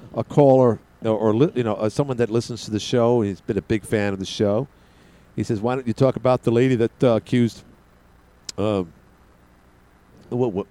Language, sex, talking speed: English, male, 200 wpm